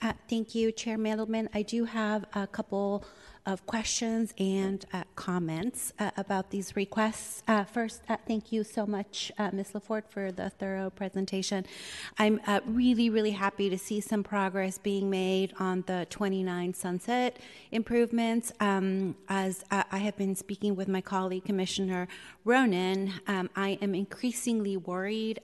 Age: 30-49